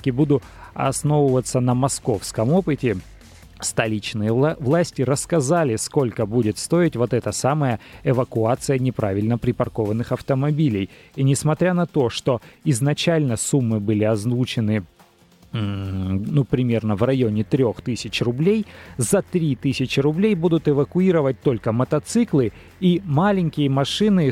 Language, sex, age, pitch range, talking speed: Russian, male, 30-49, 115-145 Hz, 105 wpm